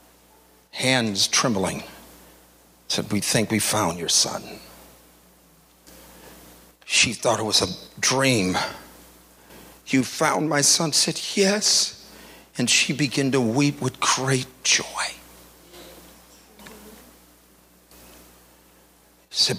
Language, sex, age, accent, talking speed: English, male, 40-59, American, 90 wpm